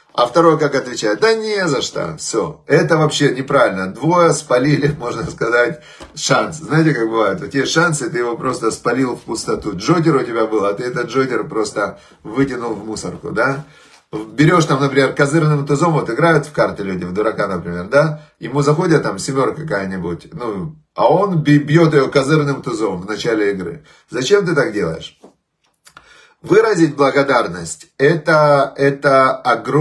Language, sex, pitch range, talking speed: Russian, male, 120-160 Hz, 155 wpm